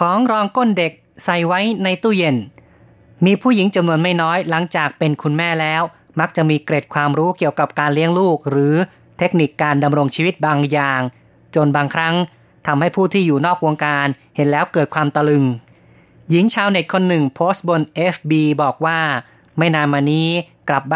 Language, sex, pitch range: Thai, female, 145-175 Hz